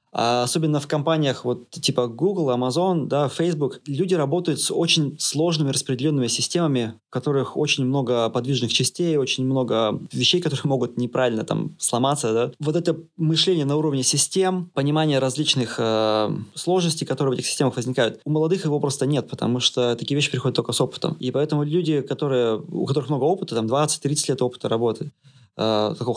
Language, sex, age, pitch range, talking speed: Russian, male, 20-39, 125-155 Hz, 165 wpm